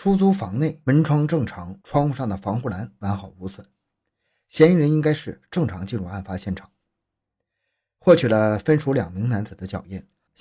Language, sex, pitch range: Chinese, male, 95-135 Hz